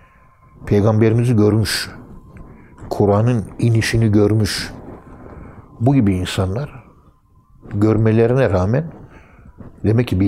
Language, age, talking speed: Turkish, 60-79, 75 wpm